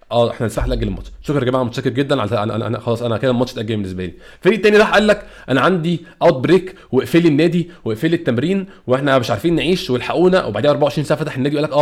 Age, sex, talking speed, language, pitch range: 20-39, male, 235 wpm, Arabic, 125-180 Hz